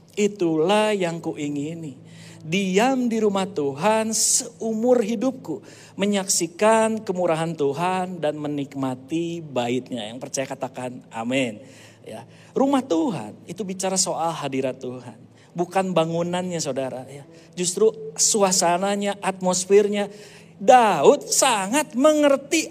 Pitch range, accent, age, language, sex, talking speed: 160-240 Hz, native, 50-69, Indonesian, male, 90 wpm